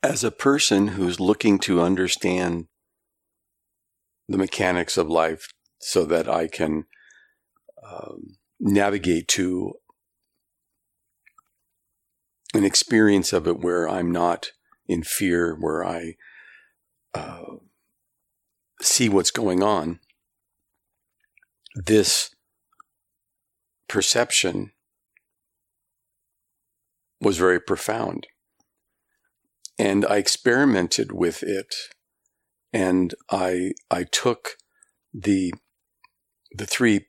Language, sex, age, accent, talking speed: English, male, 50-69, American, 85 wpm